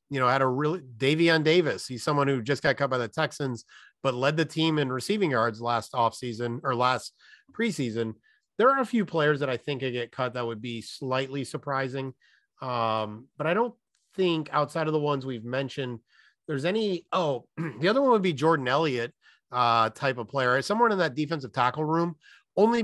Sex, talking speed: male, 200 wpm